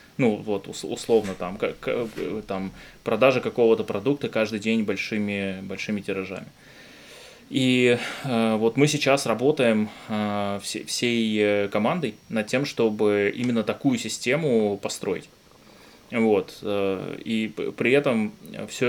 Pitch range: 105-115 Hz